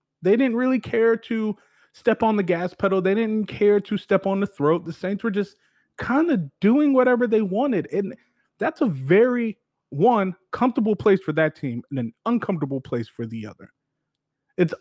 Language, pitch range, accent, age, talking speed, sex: English, 145-225 Hz, American, 30-49, 185 wpm, male